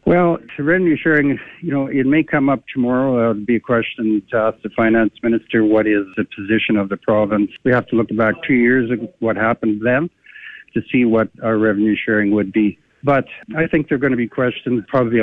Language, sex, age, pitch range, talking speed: English, male, 60-79, 110-130 Hz, 225 wpm